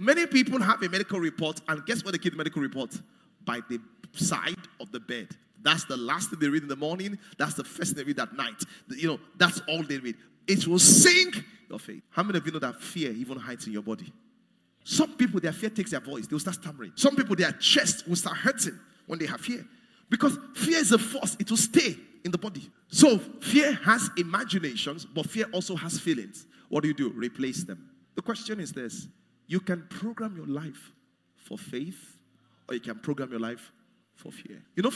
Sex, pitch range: male, 140-220 Hz